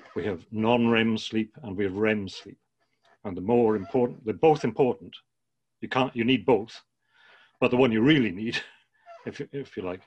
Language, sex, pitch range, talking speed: English, male, 110-125 Hz, 190 wpm